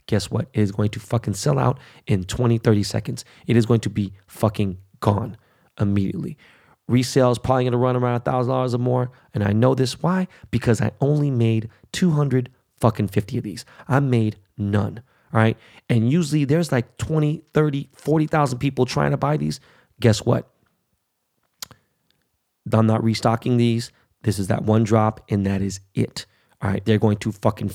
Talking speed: 175 wpm